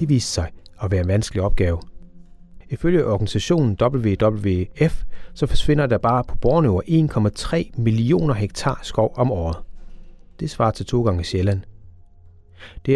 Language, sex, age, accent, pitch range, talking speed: Danish, male, 30-49, native, 95-135 Hz, 140 wpm